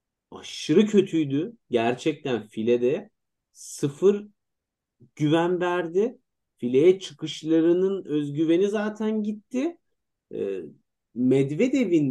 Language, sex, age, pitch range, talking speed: Turkish, male, 40-59, 130-175 Hz, 70 wpm